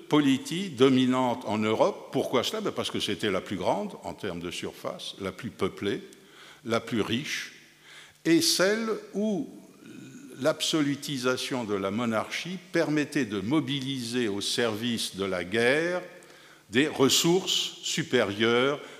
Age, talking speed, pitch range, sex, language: 60-79, 125 wpm, 105-150 Hz, male, Italian